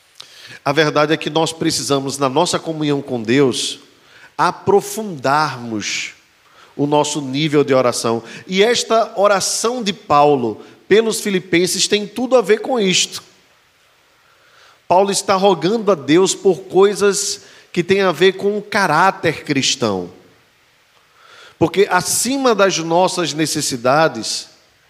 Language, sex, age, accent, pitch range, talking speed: Portuguese, male, 40-59, Brazilian, 135-190 Hz, 120 wpm